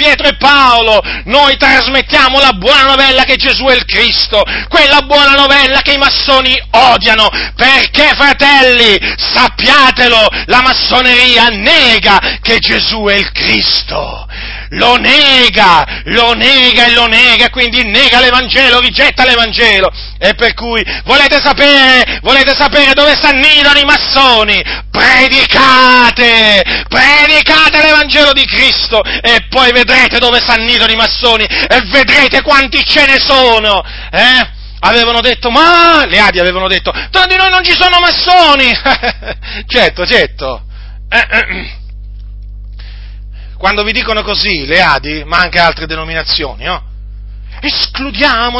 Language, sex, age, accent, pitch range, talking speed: Italian, male, 40-59, native, 205-285 Hz, 125 wpm